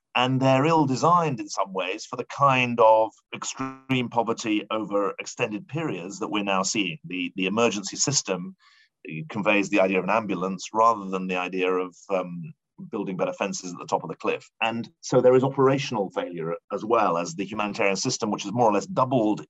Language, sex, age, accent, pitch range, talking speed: English, male, 40-59, British, 100-135 Hz, 190 wpm